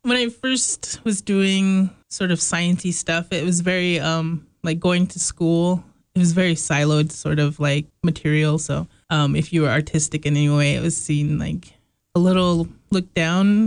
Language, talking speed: English, 185 wpm